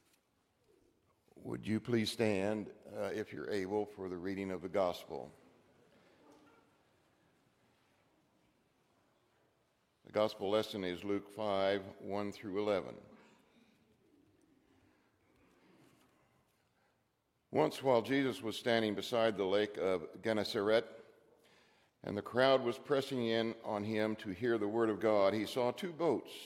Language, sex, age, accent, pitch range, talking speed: English, male, 60-79, American, 105-130 Hz, 115 wpm